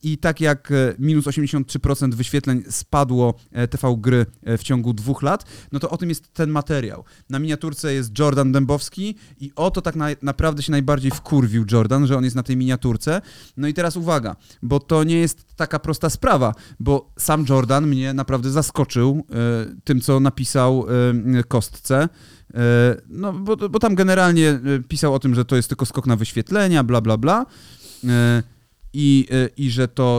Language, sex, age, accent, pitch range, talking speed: Polish, male, 30-49, native, 120-145 Hz, 165 wpm